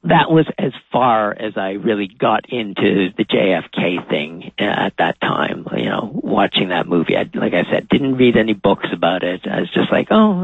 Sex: male